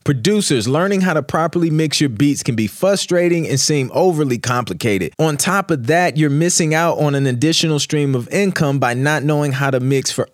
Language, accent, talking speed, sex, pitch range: English, American, 205 wpm, male, 130-160 Hz